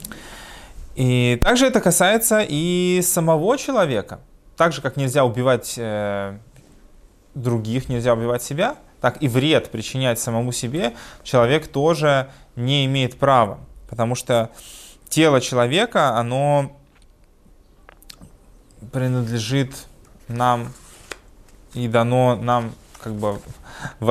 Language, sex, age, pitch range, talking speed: Russian, male, 20-39, 115-140 Hz, 100 wpm